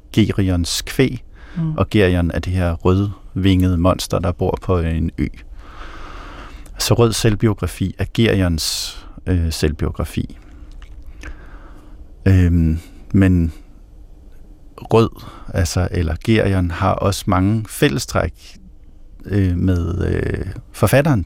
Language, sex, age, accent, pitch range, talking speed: Danish, male, 50-69, native, 85-105 Hz, 100 wpm